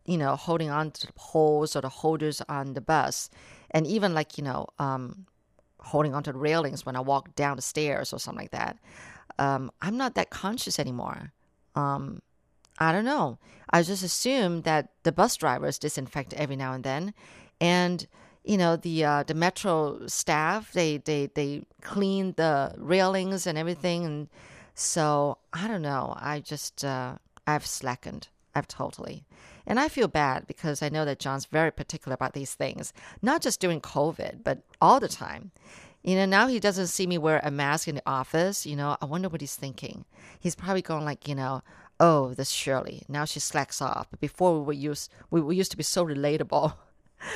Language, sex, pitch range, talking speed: English, female, 140-180 Hz, 190 wpm